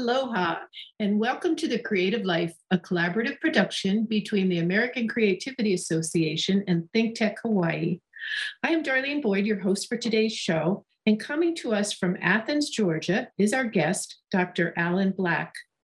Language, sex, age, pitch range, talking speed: English, female, 50-69, 180-235 Hz, 155 wpm